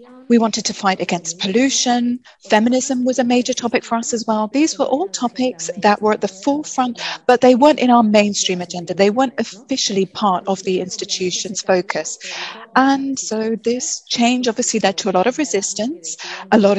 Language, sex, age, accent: English, female, 30-49, British